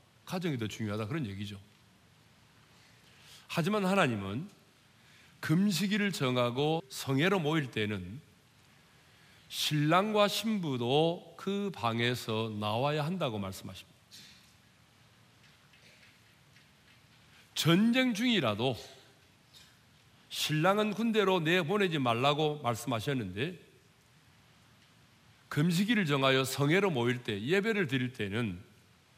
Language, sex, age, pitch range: Korean, male, 40-59, 115-175 Hz